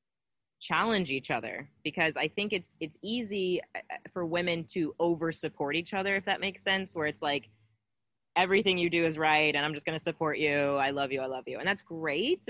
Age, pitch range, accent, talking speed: 20-39, 145-180 Hz, American, 210 wpm